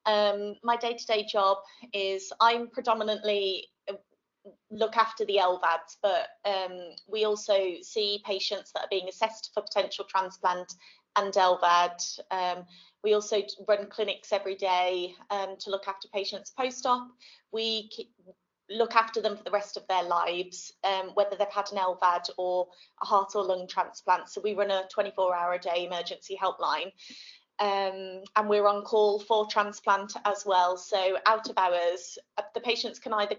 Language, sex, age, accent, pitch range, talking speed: English, female, 20-39, British, 185-215 Hz, 155 wpm